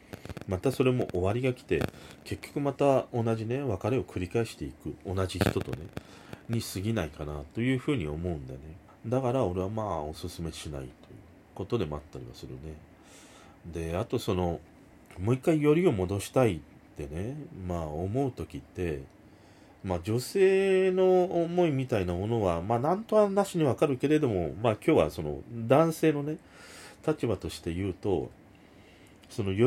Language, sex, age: Japanese, male, 40-59